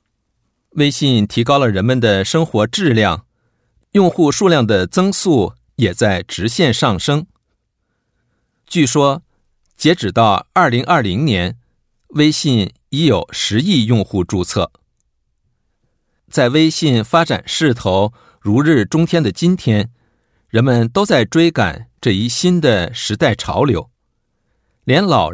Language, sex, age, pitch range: Japanese, male, 50-69, 110-155 Hz